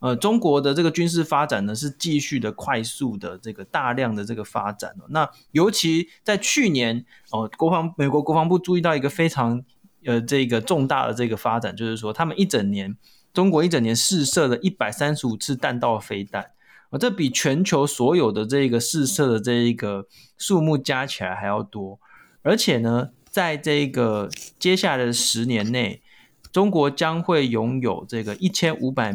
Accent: native